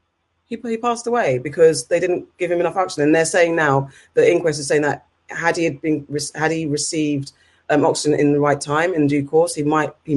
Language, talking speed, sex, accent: English, 230 wpm, female, British